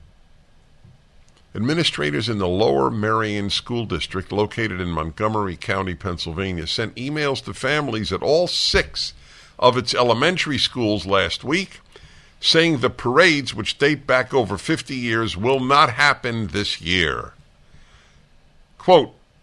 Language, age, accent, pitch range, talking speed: English, 50-69, American, 85-125 Hz, 125 wpm